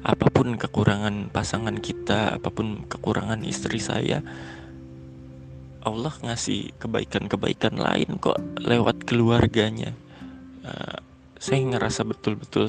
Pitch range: 100-120 Hz